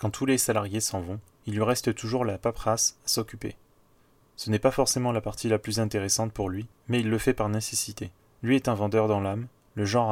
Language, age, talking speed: French, 20-39, 230 wpm